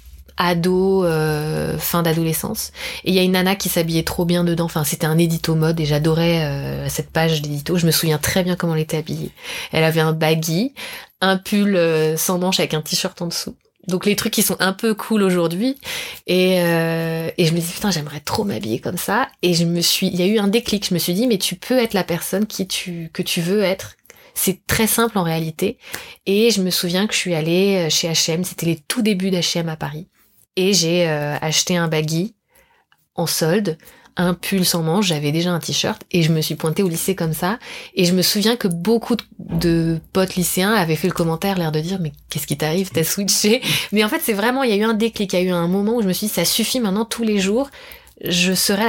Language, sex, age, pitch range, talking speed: French, female, 20-39, 165-200 Hz, 240 wpm